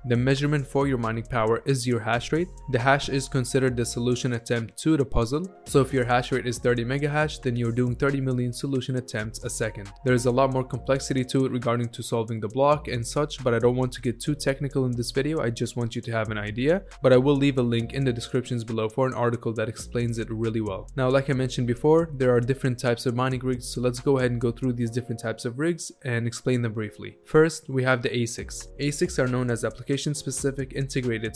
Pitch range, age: 115-135 Hz, 20-39